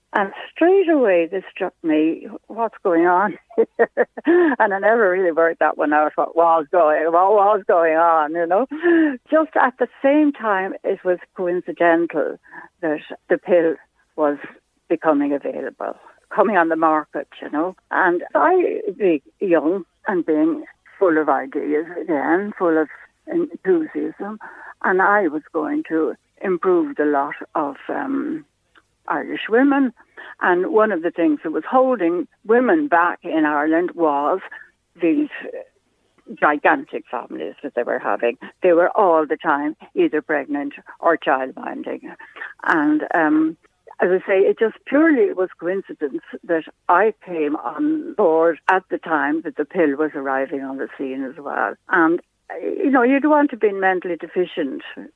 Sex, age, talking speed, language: female, 60-79, 150 wpm, English